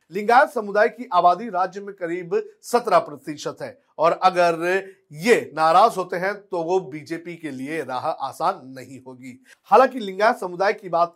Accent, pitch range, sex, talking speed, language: native, 170-215 Hz, male, 160 wpm, Hindi